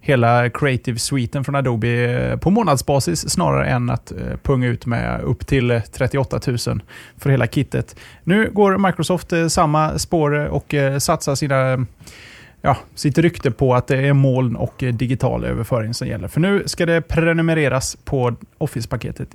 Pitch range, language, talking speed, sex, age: 125-165 Hz, Swedish, 145 wpm, male, 20-39